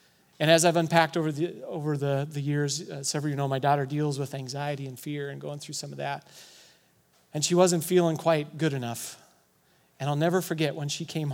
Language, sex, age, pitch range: English, male, 40-59, 120-165 Hz